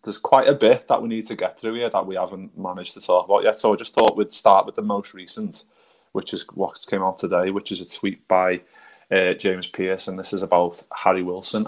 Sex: male